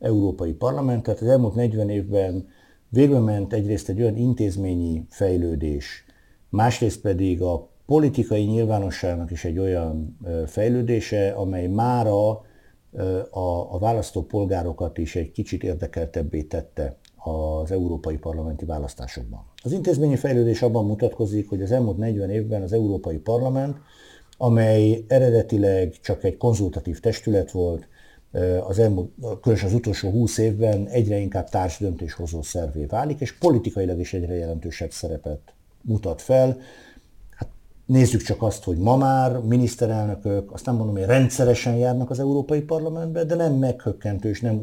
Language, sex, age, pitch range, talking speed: Hungarian, male, 60-79, 90-115 Hz, 135 wpm